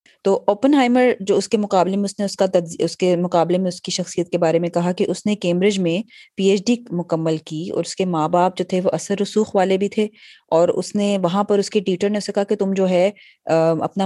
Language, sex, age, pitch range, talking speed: Urdu, female, 20-39, 175-210 Hz, 270 wpm